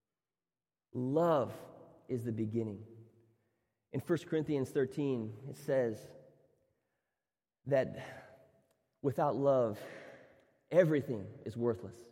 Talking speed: 80 wpm